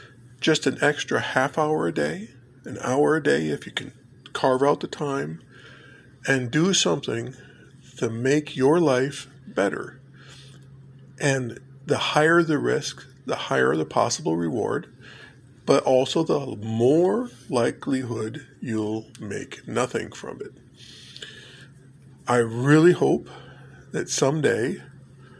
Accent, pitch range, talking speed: American, 125-145 Hz, 120 wpm